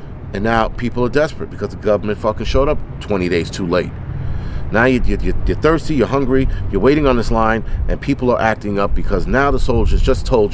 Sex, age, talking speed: male, 30-49, 215 wpm